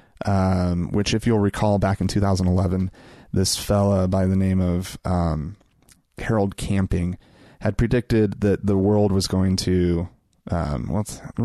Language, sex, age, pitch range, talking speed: English, male, 30-49, 90-105 Hz, 145 wpm